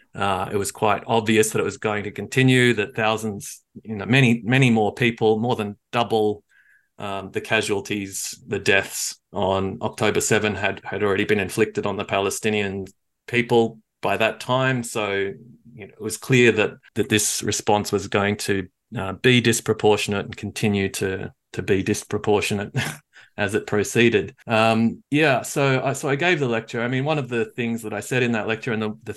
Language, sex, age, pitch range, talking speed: English, male, 30-49, 105-120 Hz, 185 wpm